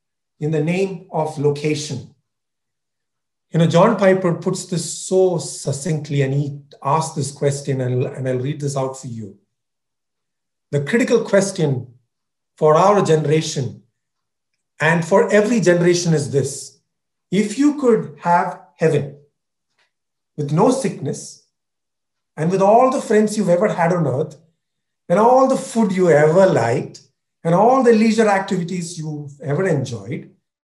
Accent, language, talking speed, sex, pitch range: Indian, English, 135 wpm, male, 145-190 Hz